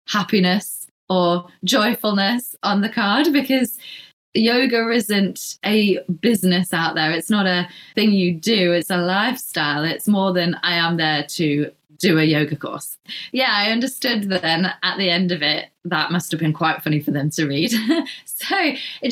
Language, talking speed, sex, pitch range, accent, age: English, 175 wpm, female, 170-225 Hz, British, 20-39